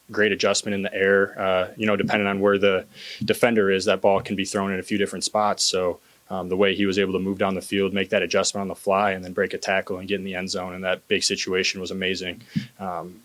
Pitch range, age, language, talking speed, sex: 95-105 Hz, 20-39, English, 270 wpm, male